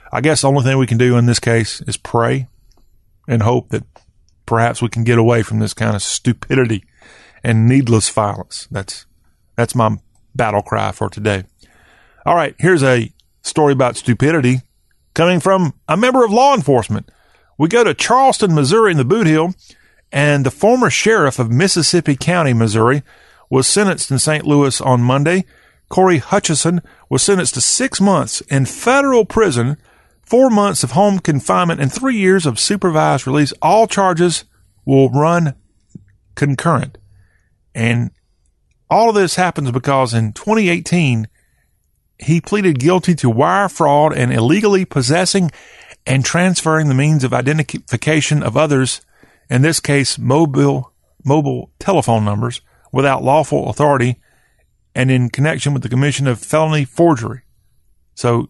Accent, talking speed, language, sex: American, 150 wpm, English, male